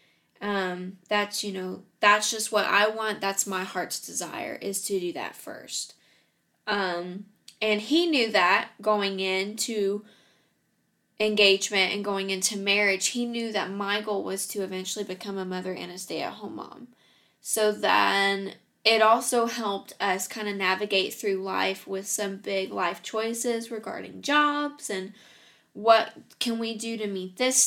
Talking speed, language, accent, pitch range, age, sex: 160 wpm, English, American, 195-225 Hz, 10-29, female